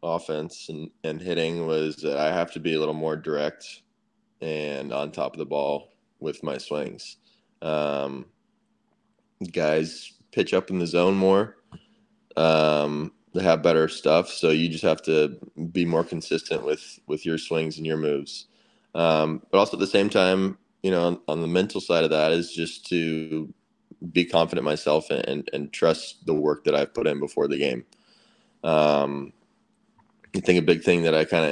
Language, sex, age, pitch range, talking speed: English, male, 20-39, 75-85 Hz, 185 wpm